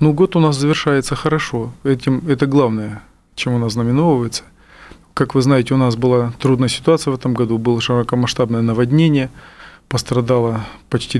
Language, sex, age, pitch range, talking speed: Russian, male, 20-39, 120-135 Hz, 155 wpm